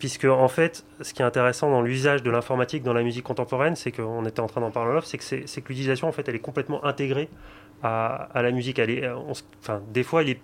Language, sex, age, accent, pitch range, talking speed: French, male, 30-49, French, 115-145 Hz, 205 wpm